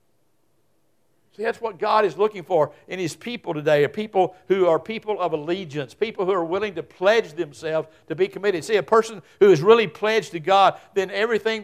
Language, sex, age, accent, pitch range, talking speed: English, male, 60-79, American, 160-210 Hz, 200 wpm